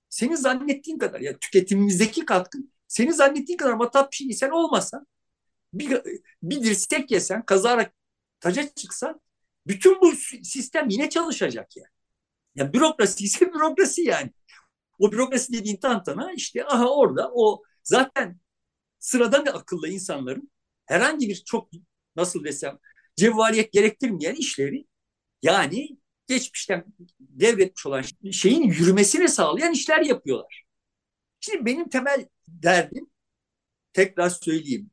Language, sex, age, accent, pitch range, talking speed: Turkish, male, 60-79, native, 190-275 Hz, 110 wpm